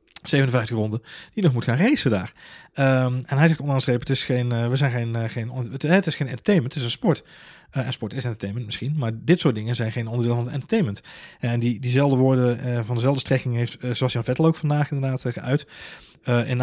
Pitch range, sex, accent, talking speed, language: 115-135 Hz, male, Dutch, 225 wpm, Dutch